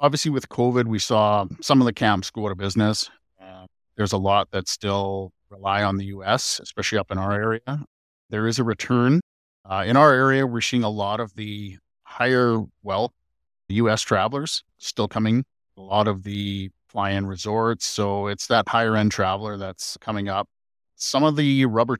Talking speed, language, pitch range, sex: 180 wpm, English, 100-115 Hz, male